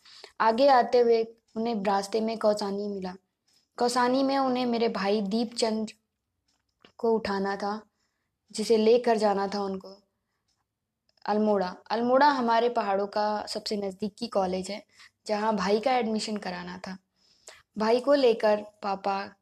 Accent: native